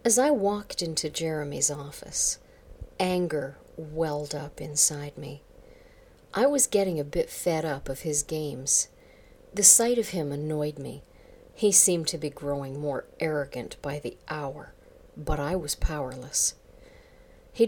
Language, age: English, 50-69